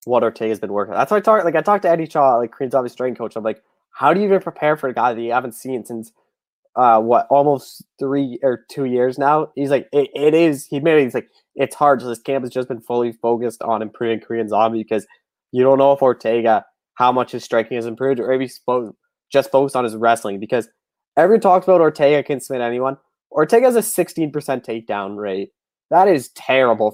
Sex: male